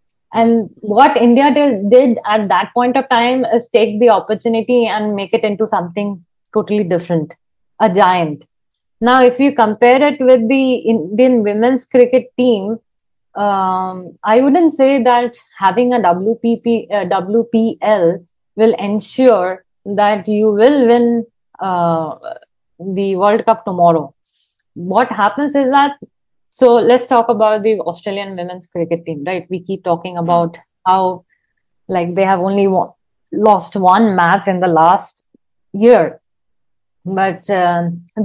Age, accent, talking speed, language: 20-39, Indian, 135 wpm, English